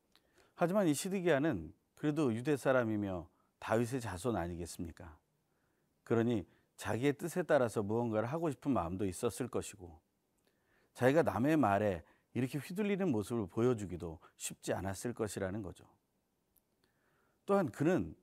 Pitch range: 95-135 Hz